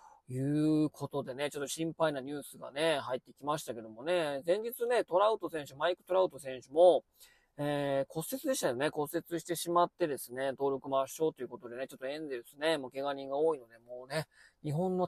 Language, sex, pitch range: Japanese, male, 135-185 Hz